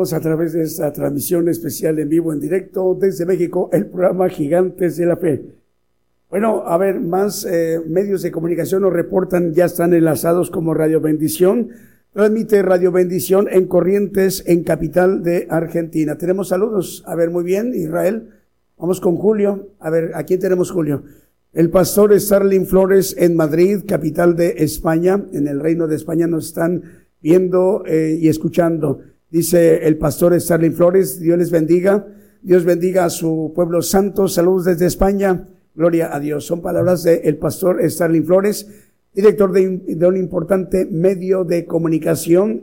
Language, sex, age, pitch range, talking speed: Spanish, male, 50-69, 165-190 Hz, 155 wpm